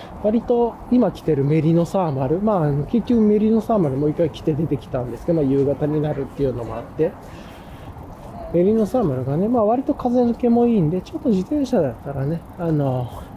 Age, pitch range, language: 20-39, 135-205 Hz, Japanese